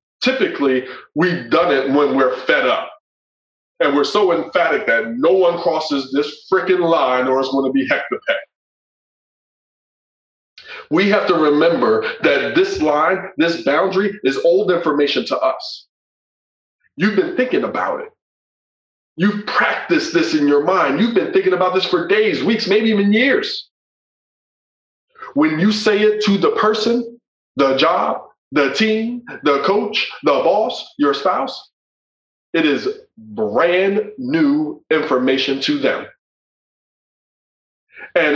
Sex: male